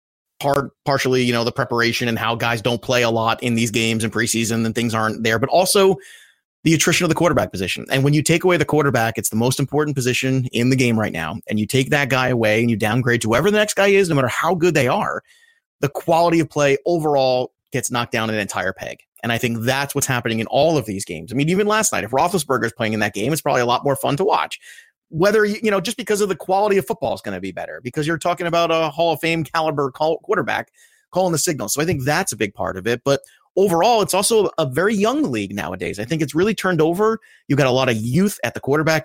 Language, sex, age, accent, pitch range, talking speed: English, male, 30-49, American, 120-165 Hz, 265 wpm